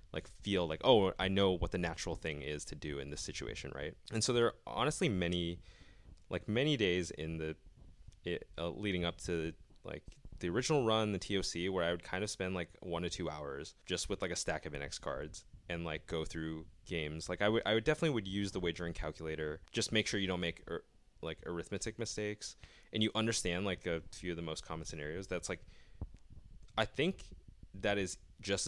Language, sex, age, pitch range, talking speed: English, male, 20-39, 80-100 Hz, 215 wpm